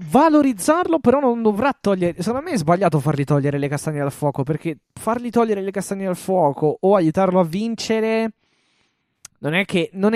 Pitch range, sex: 145-190 Hz, male